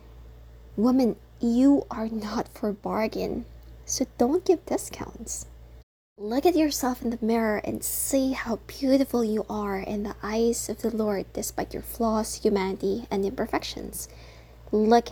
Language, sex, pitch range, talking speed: English, female, 190-240 Hz, 140 wpm